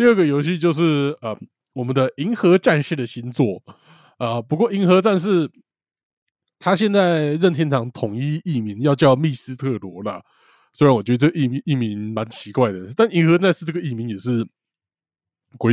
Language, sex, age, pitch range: Chinese, male, 20-39, 115-165 Hz